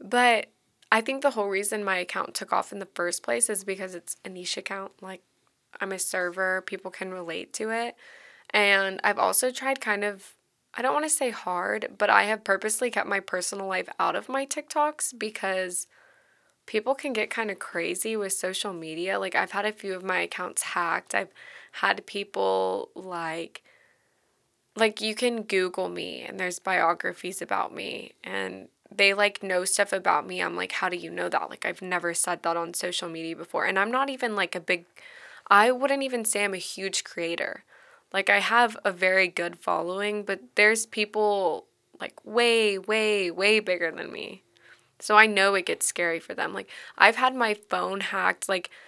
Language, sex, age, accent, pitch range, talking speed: English, female, 20-39, American, 180-215 Hz, 190 wpm